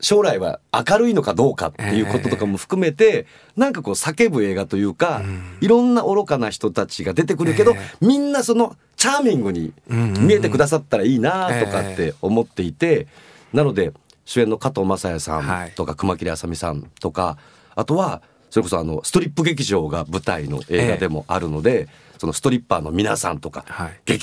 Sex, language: male, Japanese